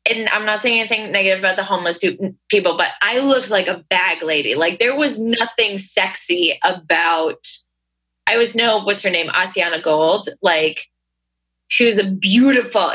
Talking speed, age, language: 165 wpm, 20-39, English